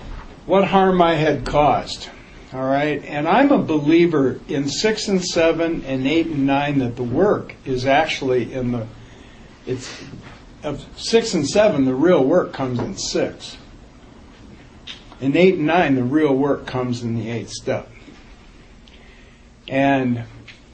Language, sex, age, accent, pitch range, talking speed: English, male, 60-79, American, 125-170 Hz, 145 wpm